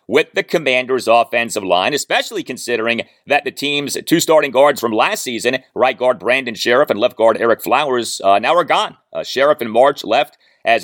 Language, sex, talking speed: English, male, 195 wpm